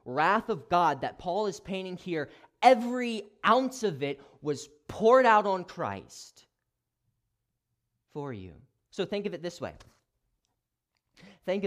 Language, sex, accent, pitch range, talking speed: English, male, American, 105-140 Hz, 135 wpm